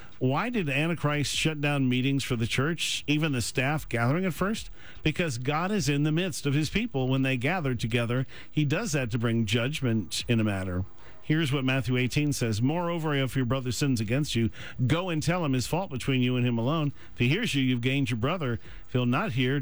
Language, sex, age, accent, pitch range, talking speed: English, male, 50-69, American, 120-145 Hz, 220 wpm